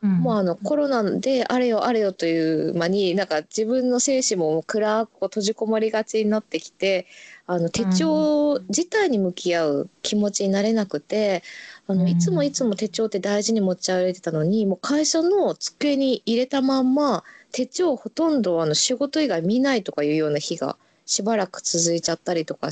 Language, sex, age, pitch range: Japanese, female, 20-39, 180-260 Hz